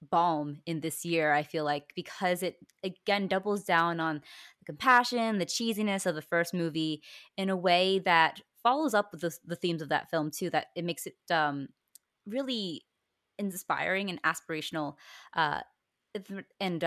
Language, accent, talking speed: English, American, 165 wpm